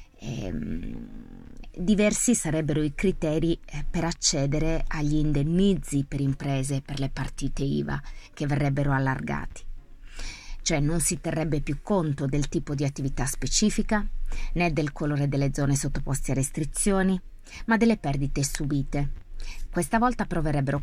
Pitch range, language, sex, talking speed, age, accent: 135-160 Hz, Italian, female, 125 wpm, 30-49, native